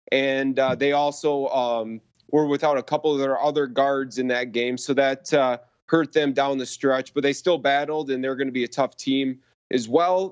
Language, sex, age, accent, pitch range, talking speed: English, male, 30-49, American, 135-155 Hz, 220 wpm